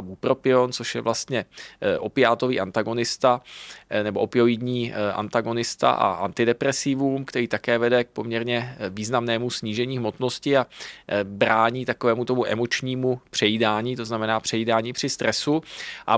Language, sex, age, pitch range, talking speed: Czech, male, 20-39, 110-125 Hz, 110 wpm